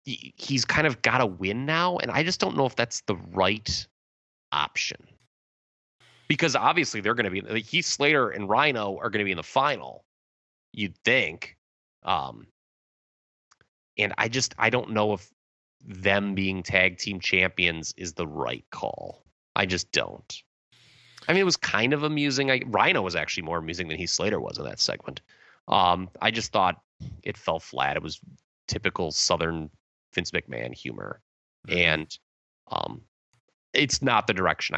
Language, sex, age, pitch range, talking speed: English, male, 30-49, 90-120 Hz, 165 wpm